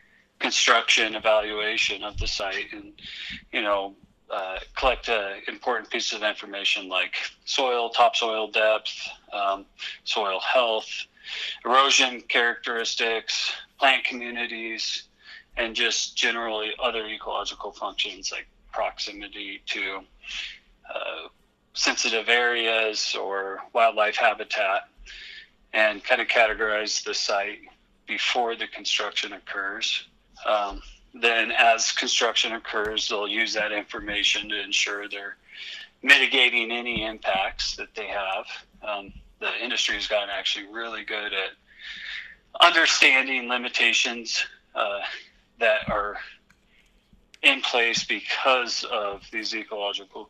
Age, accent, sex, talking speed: 30-49, American, male, 105 wpm